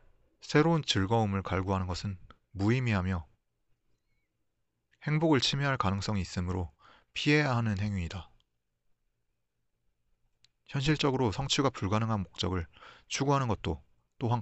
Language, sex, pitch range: Korean, male, 85-125 Hz